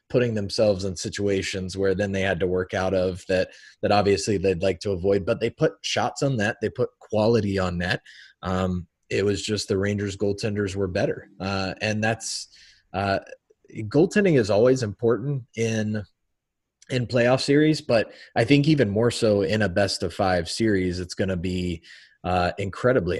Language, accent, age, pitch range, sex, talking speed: English, American, 30-49, 95-115 Hz, male, 180 wpm